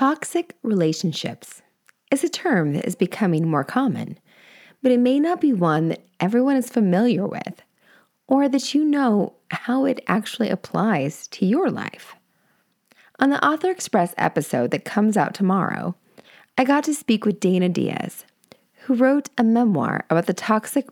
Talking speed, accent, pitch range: 160 wpm, American, 180-240 Hz